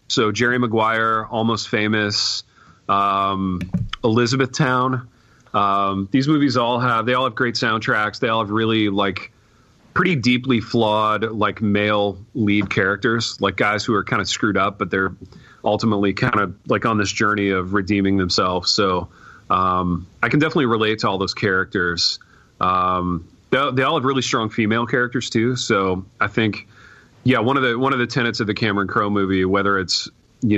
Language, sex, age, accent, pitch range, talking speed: English, male, 30-49, American, 95-125 Hz, 175 wpm